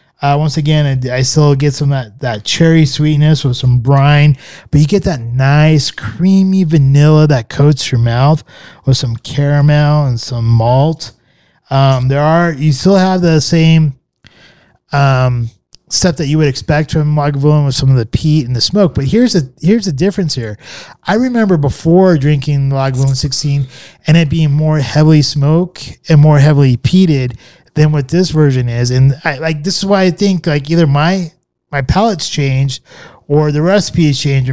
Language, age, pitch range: English, 20-39, 135-165 Hz